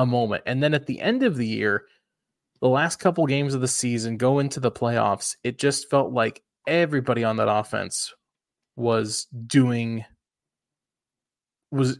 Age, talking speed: 20-39, 165 wpm